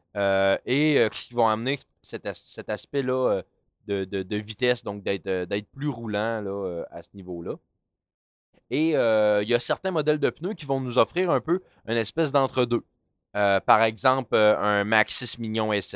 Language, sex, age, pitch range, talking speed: French, male, 20-39, 100-130 Hz, 190 wpm